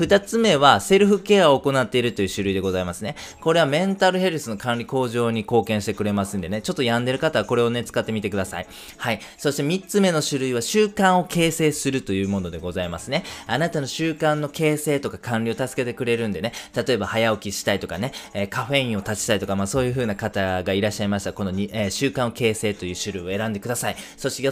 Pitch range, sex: 100-150 Hz, male